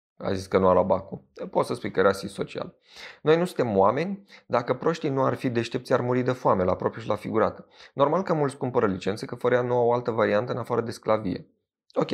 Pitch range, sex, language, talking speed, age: 100-130 Hz, male, Romanian, 245 wpm, 30-49